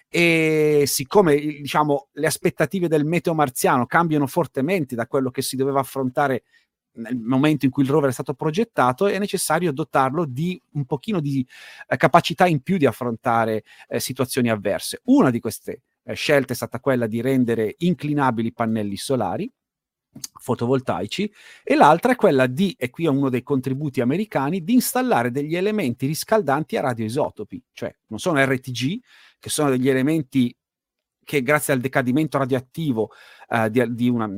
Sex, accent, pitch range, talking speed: male, native, 130-170 Hz, 160 wpm